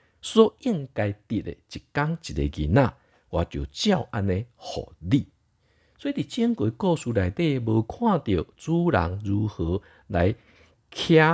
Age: 50-69